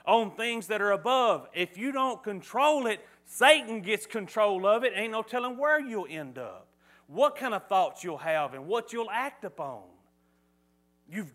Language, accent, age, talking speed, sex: English, American, 40-59, 180 wpm, male